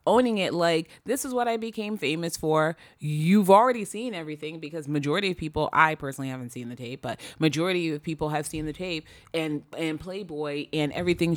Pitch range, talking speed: 150-215 Hz, 195 wpm